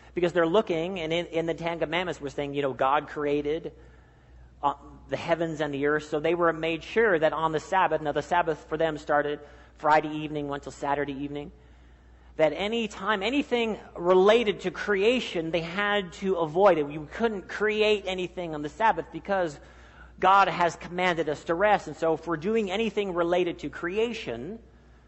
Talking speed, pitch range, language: 180 wpm, 140-180 Hz, English